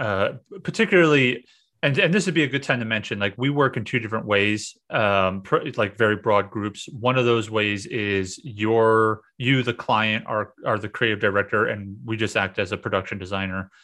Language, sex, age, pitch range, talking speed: English, male, 30-49, 100-130 Hz, 205 wpm